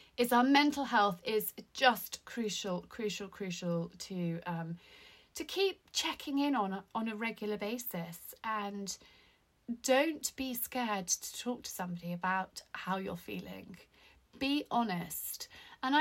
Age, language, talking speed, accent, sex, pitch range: 30-49, English, 135 wpm, British, female, 200-265 Hz